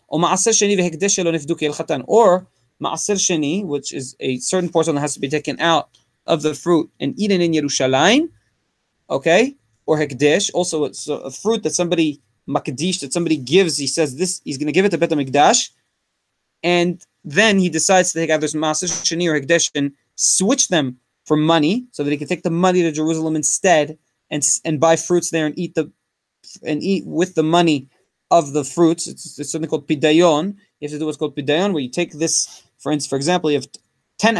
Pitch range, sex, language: 150-180 Hz, male, English